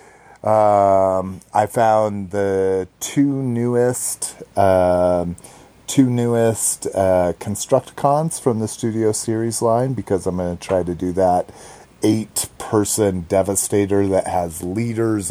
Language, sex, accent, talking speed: English, male, American, 120 wpm